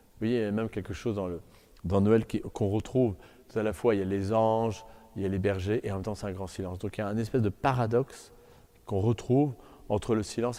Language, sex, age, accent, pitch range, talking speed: French, male, 40-59, French, 100-130 Hz, 285 wpm